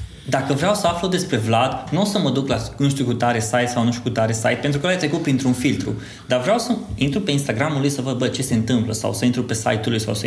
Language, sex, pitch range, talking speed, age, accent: Romanian, male, 115-140 Hz, 290 wpm, 20-39, native